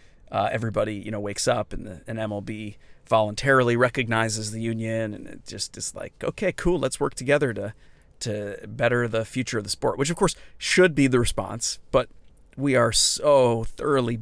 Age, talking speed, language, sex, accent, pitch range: 30-49, 185 wpm, English, male, American, 105-125 Hz